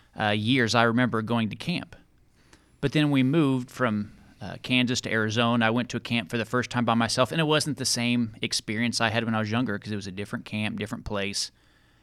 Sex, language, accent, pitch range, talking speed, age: male, English, American, 115-135 Hz, 235 wpm, 30-49